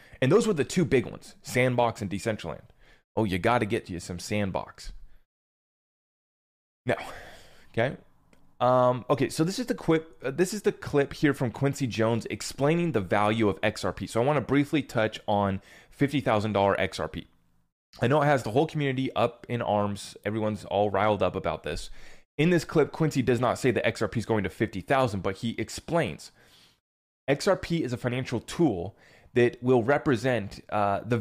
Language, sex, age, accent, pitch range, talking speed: English, male, 20-39, American, 105-135 Hz, 175 wpm